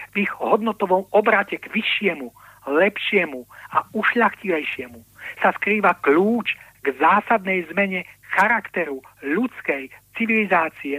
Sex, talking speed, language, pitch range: male, 100 wpm, Slovak, 145-205 Hz